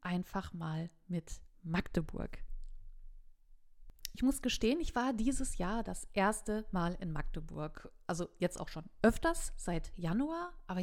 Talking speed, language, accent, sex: 135 wpm, German, German, female